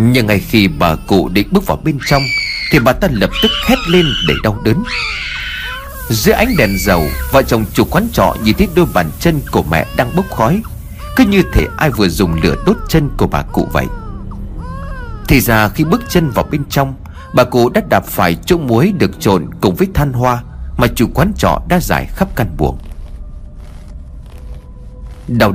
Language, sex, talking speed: Vietnamese, male, 195 wpm